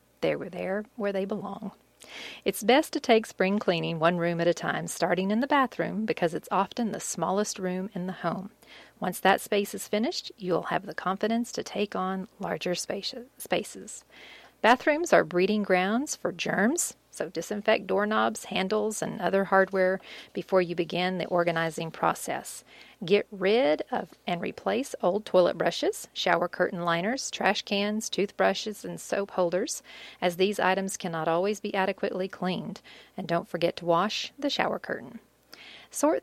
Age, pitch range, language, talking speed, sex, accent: 40-59, 180-215 Hz, English, 160 wpm, female, American